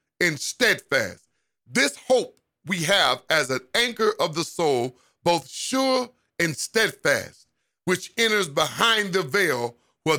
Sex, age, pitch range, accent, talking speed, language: male, 50-69, 145-190 Hz, American, 130 wpm, English